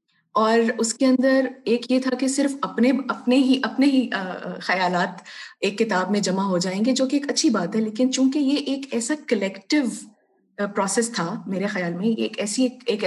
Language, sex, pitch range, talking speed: Urdu, female, 205-250 Hz, 195 wpm